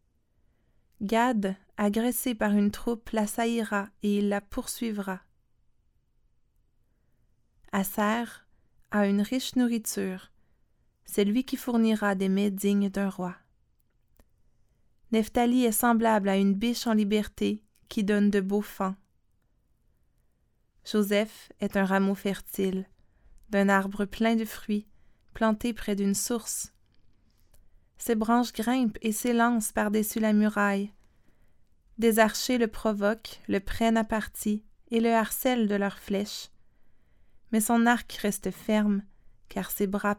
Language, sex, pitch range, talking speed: French, female, 195-225 Hz, 120 wpm